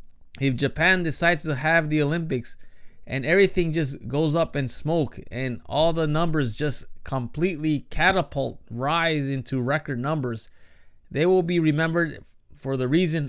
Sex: male